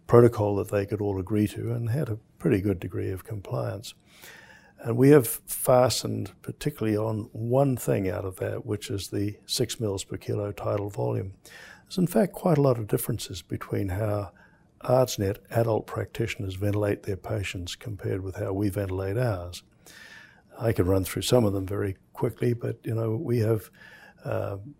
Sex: male